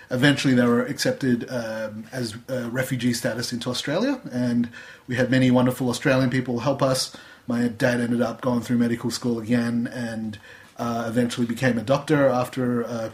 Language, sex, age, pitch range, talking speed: English, male, 30-49, 115-130 Hz, 165 wpm